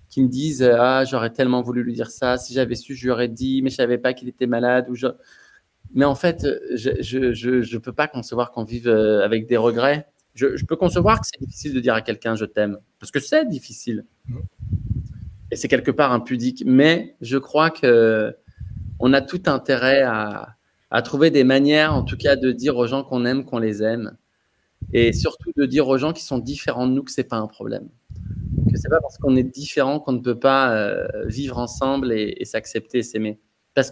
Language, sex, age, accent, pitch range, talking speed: French, male, 20-39, French, 115-140 Hz, 230 wpm